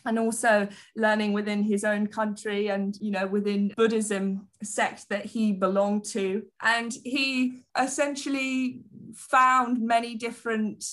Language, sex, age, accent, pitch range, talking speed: English, female, 20-39, British, 205-230 Hz, 125 wpm